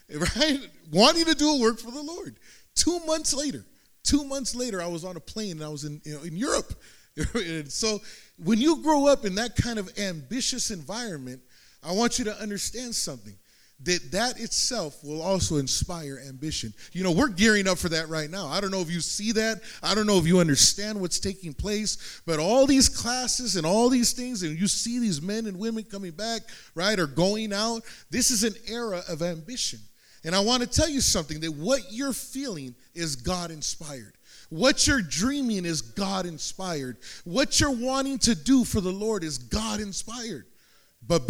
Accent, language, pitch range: American, English, 165-245 Hz